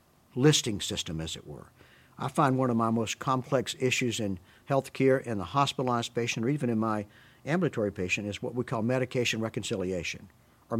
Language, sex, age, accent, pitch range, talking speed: English, male, 50-69, American, 110-135 Hz, 180 wpm